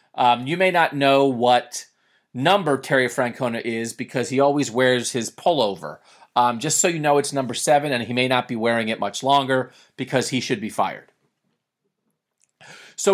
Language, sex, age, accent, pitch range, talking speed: English, male, 40-59, American, 125-160 Hz, 180 wpm